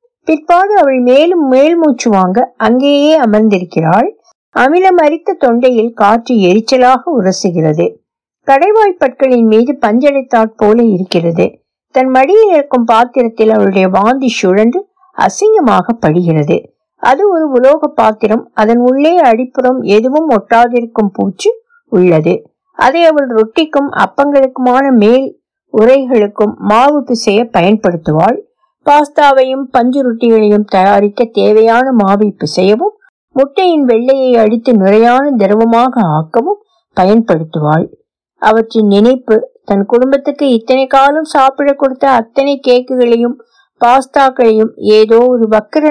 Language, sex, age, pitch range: Tamil, female, 60-79, 215-280 Hz